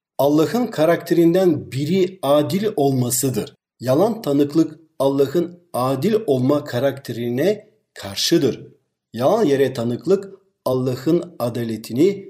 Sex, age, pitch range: male, 50-69, 125-180 Hz